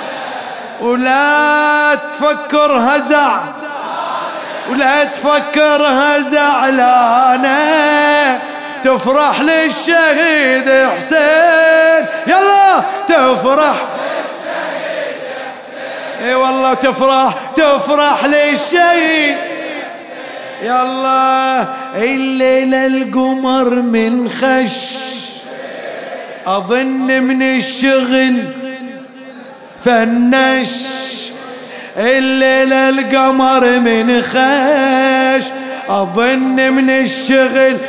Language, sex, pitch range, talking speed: English, male, 260-295 Hz, 55 wpm